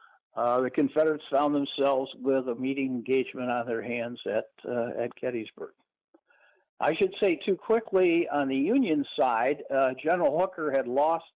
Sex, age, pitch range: male, 60-79, 130-185 Hz